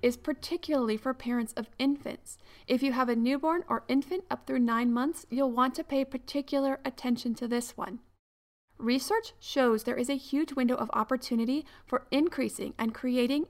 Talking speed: 175 wpm